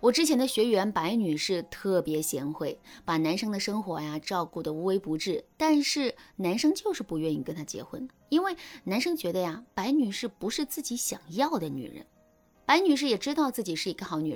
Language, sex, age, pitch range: Chinese, female, 20-39, 180-290 Hz